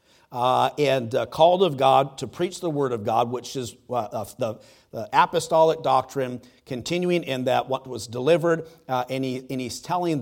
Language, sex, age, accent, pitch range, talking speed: English, male, 40-59, American, 115-135 Hz, 180 wpm